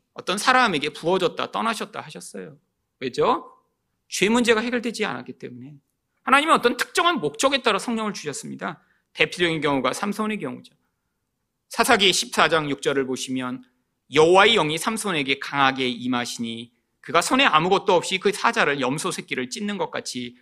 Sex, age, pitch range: male, 40-59, 175-260 Hz